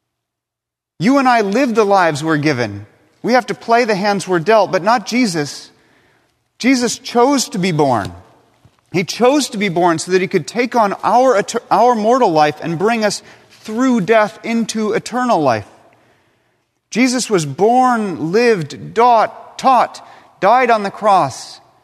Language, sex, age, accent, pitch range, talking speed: English, male, 30-49, American, 165-230 Hz, 155 wpm